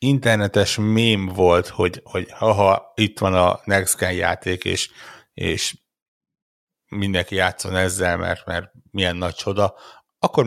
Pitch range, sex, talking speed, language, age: 90-120 Hz, male, 120 wpm, Hungarian, 60-79